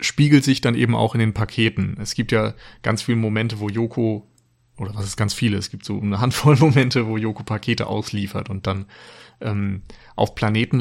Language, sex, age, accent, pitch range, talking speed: German, male, 30-49, German, 105-120 Hz, 200 wpm